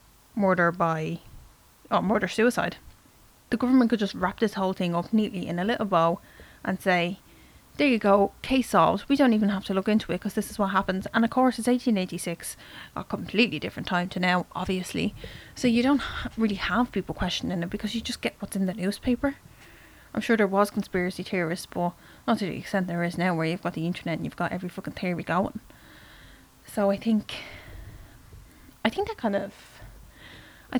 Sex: female